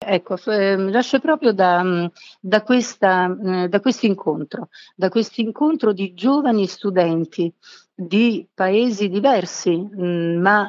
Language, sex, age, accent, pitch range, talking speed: Italian, female, 50-69, native, 180-235 Hz, 105 wpm